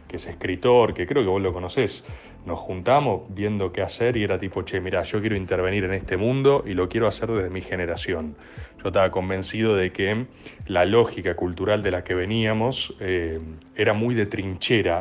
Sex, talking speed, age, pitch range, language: male, 195 wpm, 30-49, 95-110 Hz, Spanish